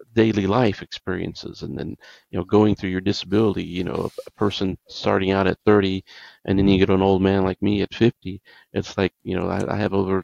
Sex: male